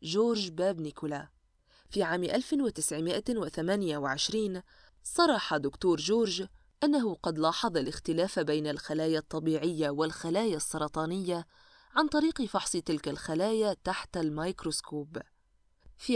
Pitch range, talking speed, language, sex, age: 155-220 Hz, 95 wpm, Arabic, female, 20-39